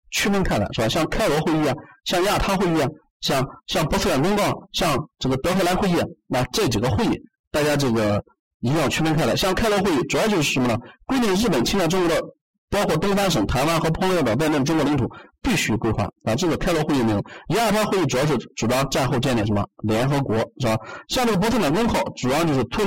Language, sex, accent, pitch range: Chinese, male, native, 115-170 Hz